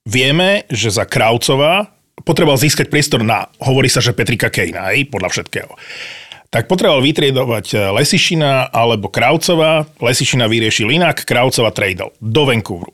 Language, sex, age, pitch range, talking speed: Slovak, male, 30-49, 105-145 Hz, 135 wpm